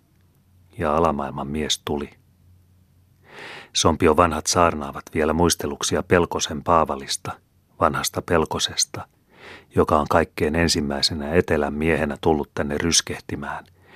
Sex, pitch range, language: male, 75-90 Hz, Finnish